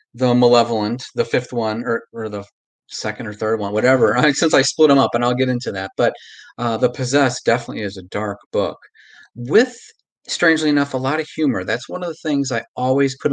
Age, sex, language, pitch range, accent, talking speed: 30-49, male, English, 120-155 Hz, American, 210 wpm